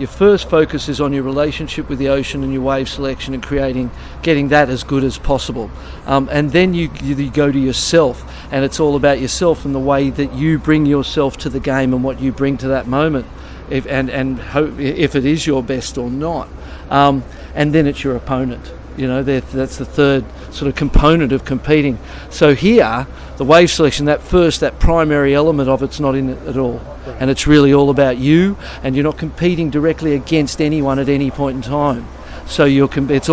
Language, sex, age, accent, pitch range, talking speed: English, male, 50-69, Australian, 135-150 Hz, 210 wpm